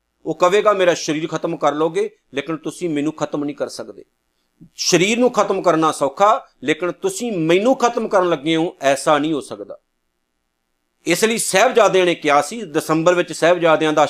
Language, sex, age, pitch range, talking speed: Punjabi, male, 50-69, 155-210 Hz, 170 wpm